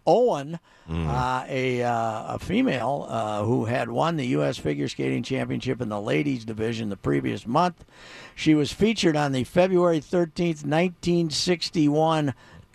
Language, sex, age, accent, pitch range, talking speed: English, male, 60-79, American, 110-155 Hz, 140 wpm